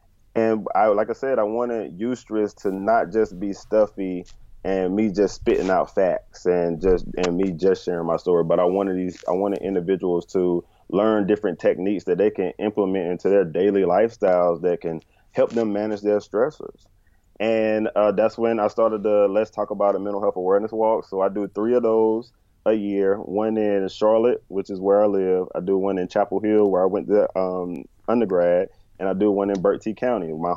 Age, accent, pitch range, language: 20-39, American, 95-110 Hz, English